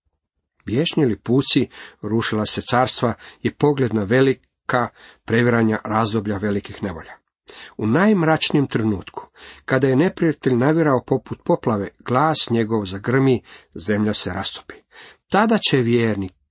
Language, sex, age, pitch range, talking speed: Croatian, male, 50-69, 100-140 Hz, 110 wpm